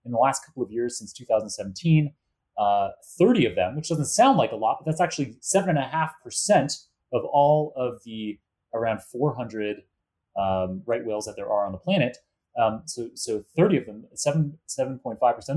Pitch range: 110-145 Hz